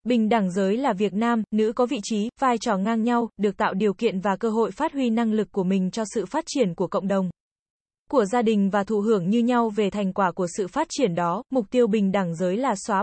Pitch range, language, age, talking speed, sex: 200-245 Hz, Vietnamese, 20-39, 265 wpm, female